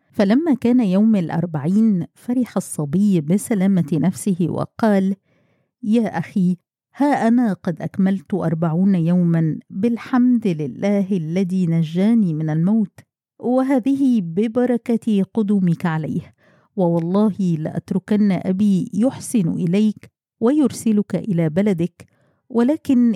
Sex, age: female, 50-69